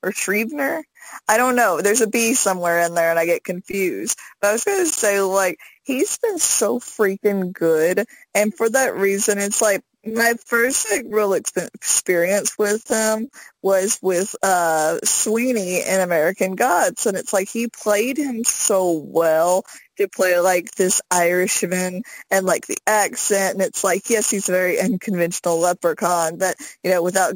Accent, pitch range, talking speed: American, 180-220 Hz, 170 wpm